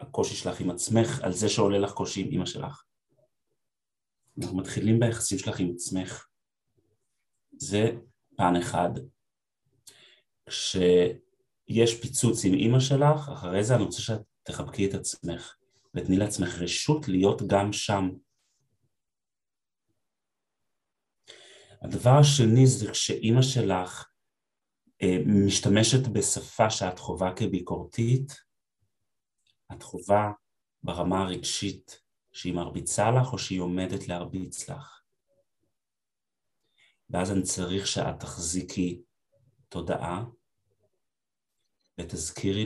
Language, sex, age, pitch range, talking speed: Hebrew, male, 30-49, 90-115 Hz, 95 wpm